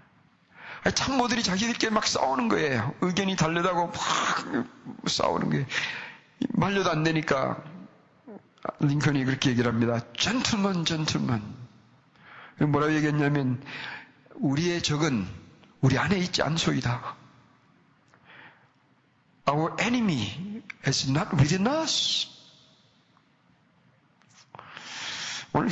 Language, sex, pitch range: Korean, male, 115-165 Hz